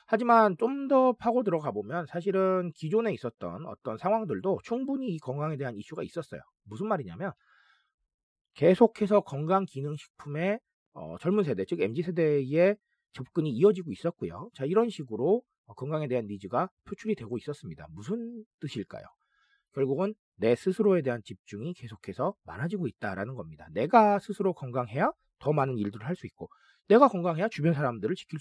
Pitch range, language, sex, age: 130-210 Hz, Korean, male, 40-59